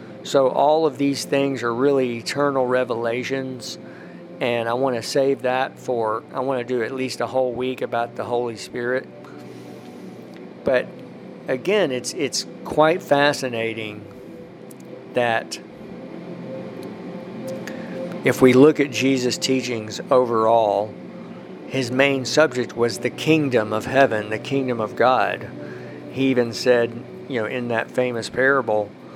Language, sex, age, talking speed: English, male, 50-69, 130 wpm